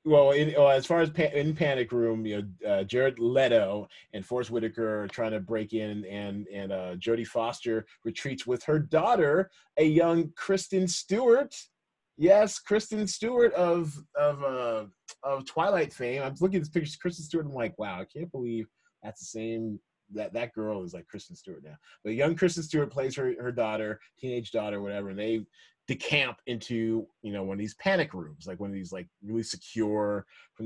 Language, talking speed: English, 195 wpm